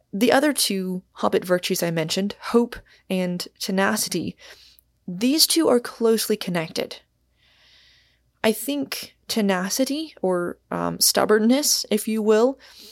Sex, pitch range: female, 180-225 Hz